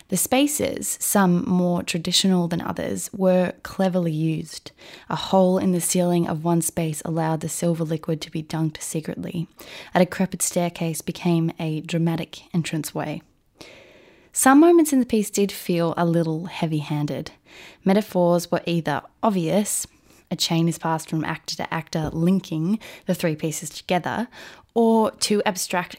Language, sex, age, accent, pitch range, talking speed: English, female, 20-39, Australian, 170-210 Hz, 145 wpm